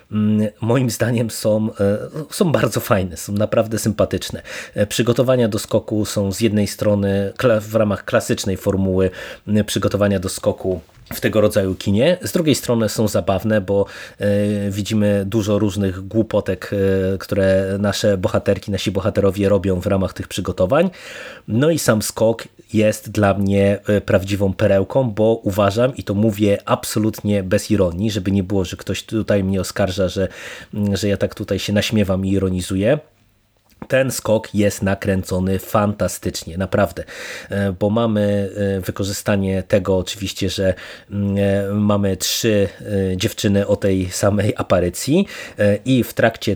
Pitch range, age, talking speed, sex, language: 100-110 Hz, 30-49, 135 wpm, male, Polish